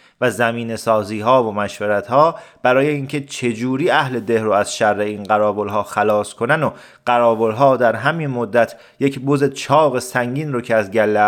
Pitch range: 115-150 Hz